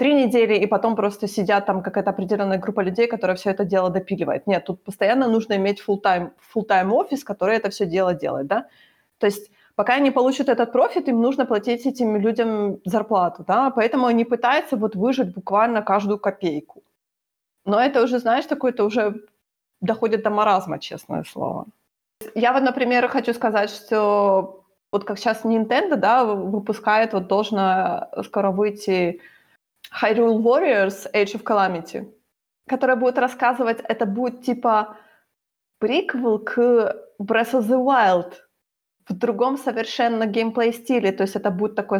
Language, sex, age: Ukrainian, female, 20-39